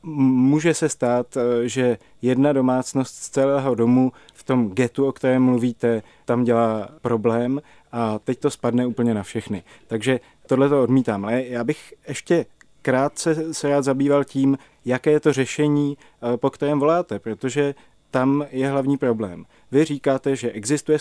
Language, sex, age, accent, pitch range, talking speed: Czech, male, 30-49, native, 120-145 Hz, 150 wpm